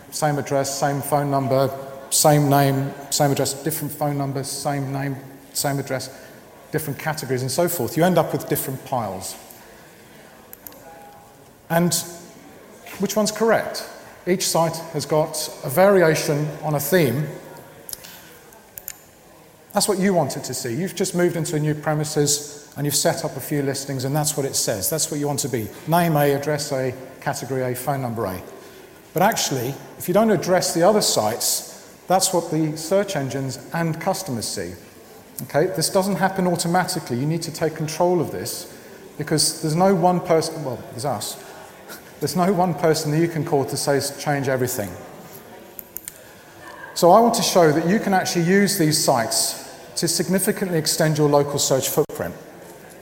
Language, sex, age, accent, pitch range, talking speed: English, male, 40-59, British, 140-175 Hz, 165 wpm